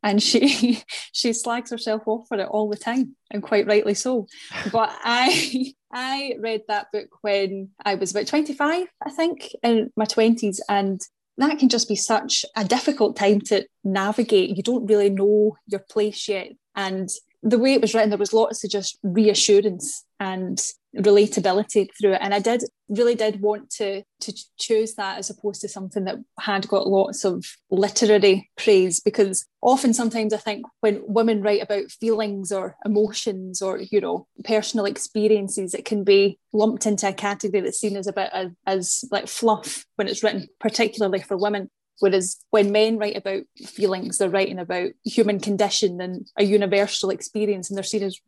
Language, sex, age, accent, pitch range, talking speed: English, female, 10-29, British, 200-230 Hz, 180 wpm